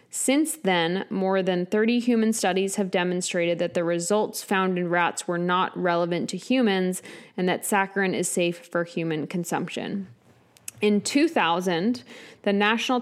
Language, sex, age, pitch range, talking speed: English, female, 20-39, 180-215 Hz, 145 wpm